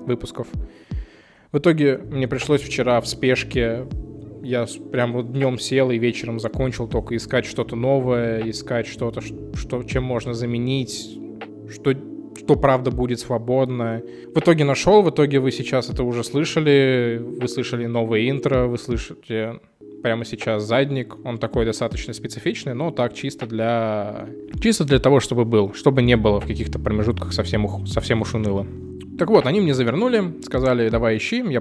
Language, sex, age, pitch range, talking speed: Russian, male, 20-39, 115-135 Hz, 155 wpm